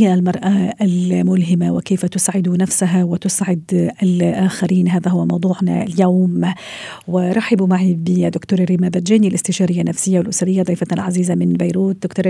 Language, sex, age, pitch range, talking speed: Arabic, female, 40-59, 175-195 Hz, 115 wpm